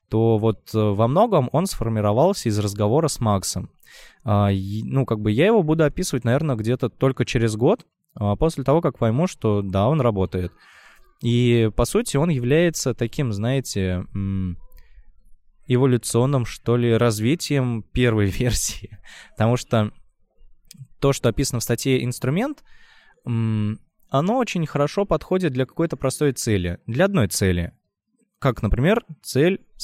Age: 20-39